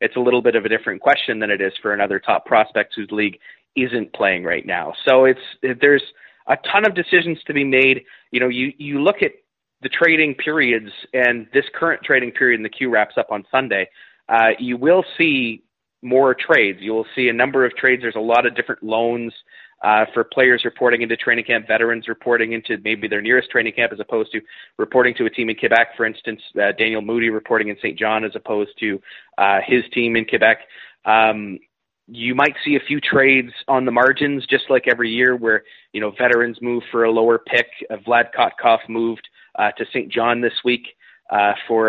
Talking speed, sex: 210 wpm, male